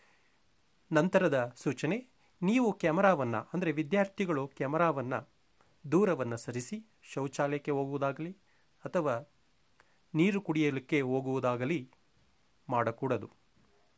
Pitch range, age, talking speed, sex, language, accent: 125-170 Hz, 30-49, 70 wpm, male, Kannada, native